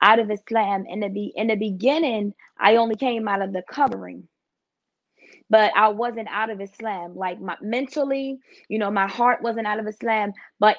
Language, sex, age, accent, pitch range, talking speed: English, female, 20-39, American, 215-250 Hz, 190 wpm